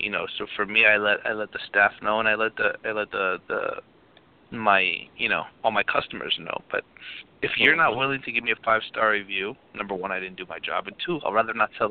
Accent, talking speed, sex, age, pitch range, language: American, 260 wpm, male, 30-49, 120-145 Hz, English